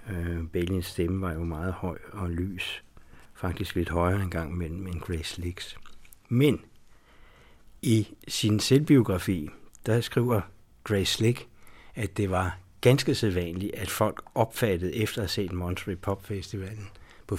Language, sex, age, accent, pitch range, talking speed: Danish, male, 60-79, native, 90-110 Hz, 150 wpm